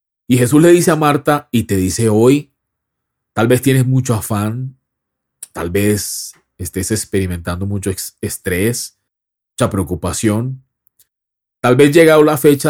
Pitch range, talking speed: 100-130 Hz, 130 wpm